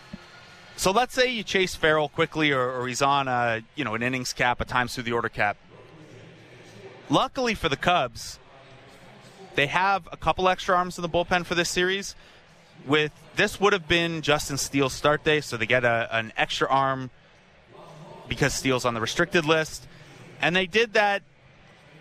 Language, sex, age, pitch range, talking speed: English, male, 30-49, 130-170 Hz, 175 wpm